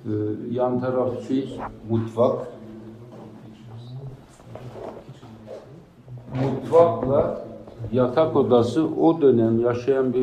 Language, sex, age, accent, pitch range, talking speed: Turkish, male, 60-79, native, 110-140 Hz, 60 wpm